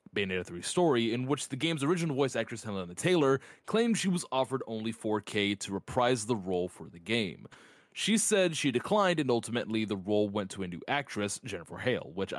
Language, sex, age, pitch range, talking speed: English, male, 20-39, 105-145 Hz, 200 wpm